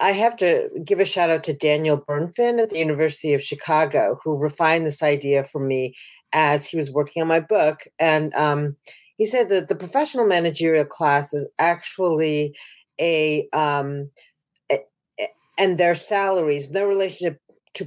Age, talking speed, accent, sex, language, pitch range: 40-59, 160 wpm, American, female, English, 150-195 Hz